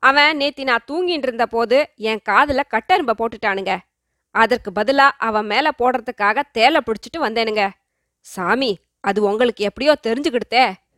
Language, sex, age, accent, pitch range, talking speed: Tamil, female, 20-39, native, 220-290 Hz, 120 wpm